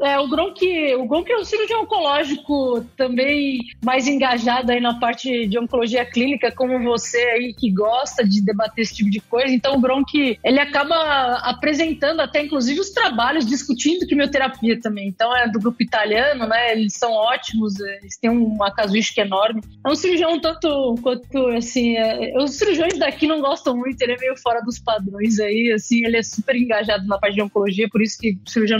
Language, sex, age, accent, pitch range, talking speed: Portuguese, female, 20-39, Brazilian, 225-275 Hz, 190 wpm